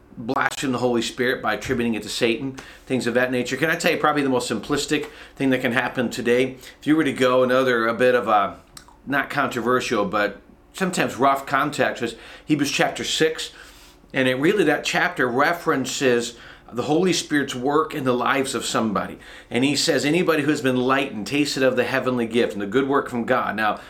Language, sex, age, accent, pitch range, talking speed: English, male, 40-59, American, 120-150 Hz, 205 wpm